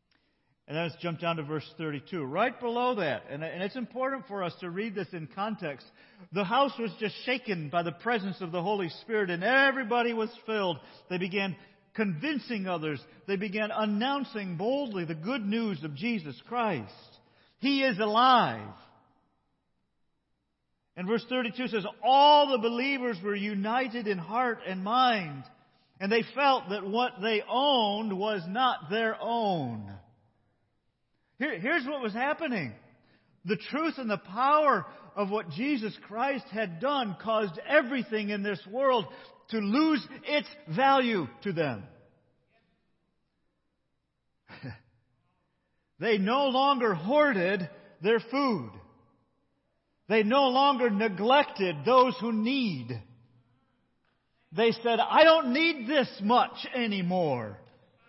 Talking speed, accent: 130 wpm, American